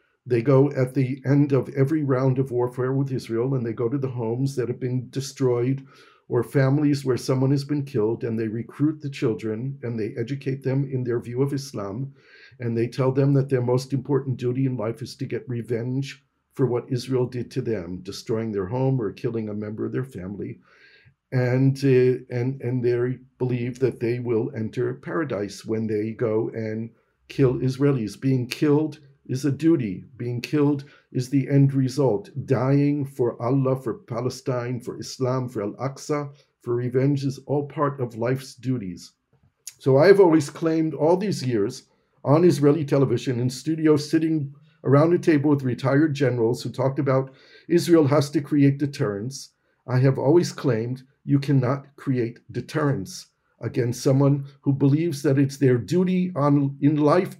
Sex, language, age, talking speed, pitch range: male, English, 50-69, 175 wpm, 120-140 Hz